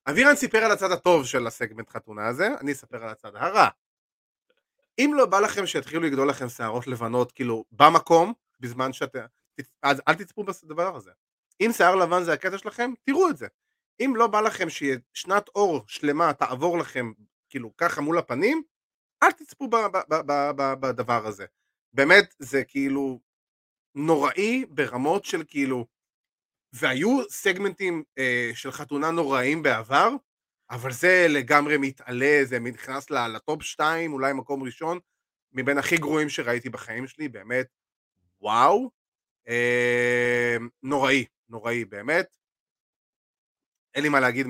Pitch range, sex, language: 125-170 Hz, male, Hebrew